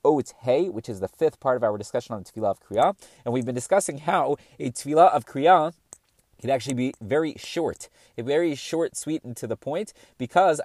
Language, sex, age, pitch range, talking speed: English, male, 30-49, 120-155 Hz, 220 wpm